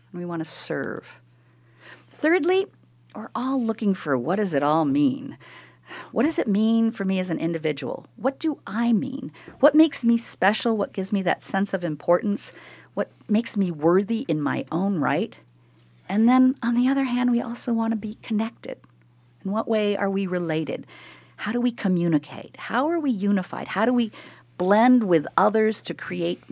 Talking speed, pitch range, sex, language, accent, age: 180 wpm, 155-240 Hz, female, English, American, 50-69